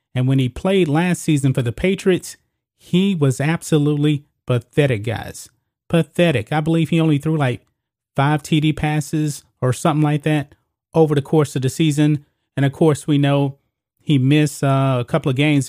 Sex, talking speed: male, 170 wpm